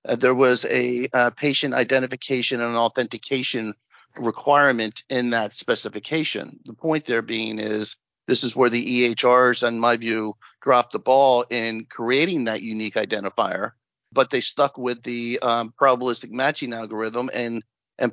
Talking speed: 150 wpm